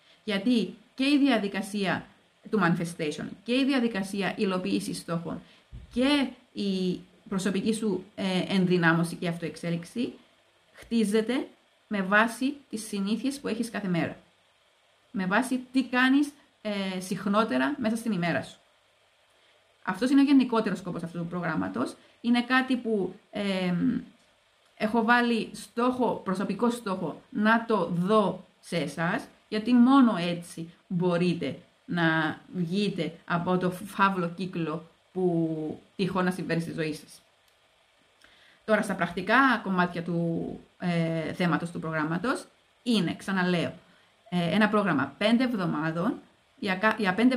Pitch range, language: 175-230 Hz, Greek